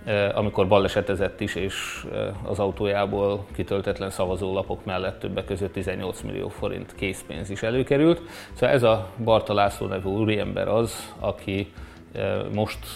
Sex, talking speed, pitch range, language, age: male, 125 wpm, 95-110 Hz, Hungarian, 30-49